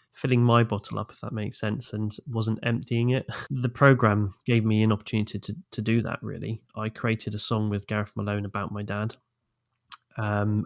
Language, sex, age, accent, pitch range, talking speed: English, male, 20-39, British, 110-120 Hz, 195 wpm